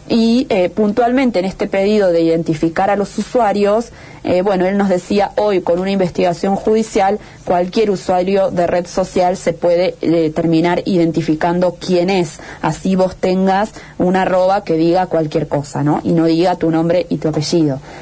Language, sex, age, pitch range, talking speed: Spanish, female, 30-49, 165-195 Hz, 170 wpm